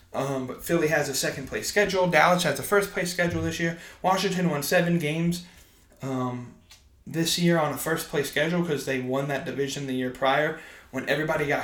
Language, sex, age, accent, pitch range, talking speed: English, male, 20-39, American, 125-170 Hz, 185 wpm